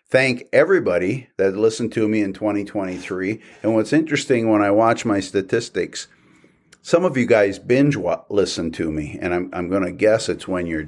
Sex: male